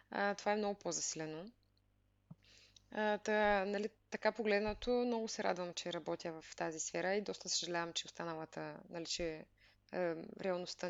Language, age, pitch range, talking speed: Bulgarian, 20-39, 165-225 Hz, 140 wpm